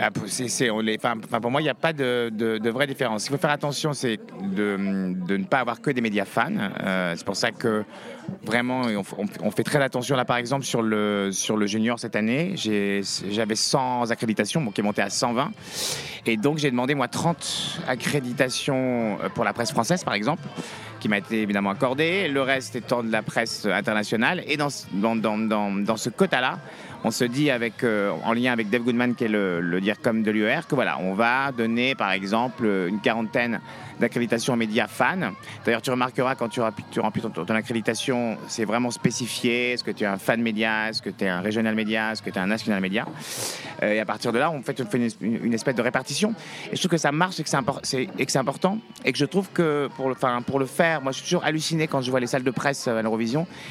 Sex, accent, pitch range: male, French, 110-140 Hz